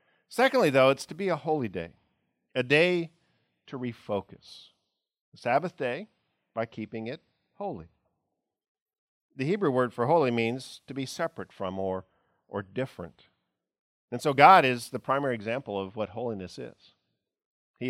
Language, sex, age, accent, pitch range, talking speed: English, male, 50-69, American, 115-160 Hz, 150 wpm